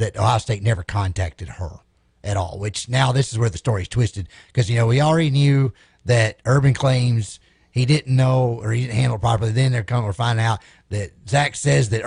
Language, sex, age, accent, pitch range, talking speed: English, male, 30-49, American, 105-135 Hz, 220 wpm